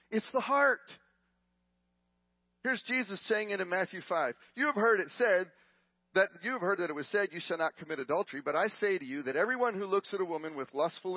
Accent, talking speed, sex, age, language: American, 225 wpm, male, 40-59, English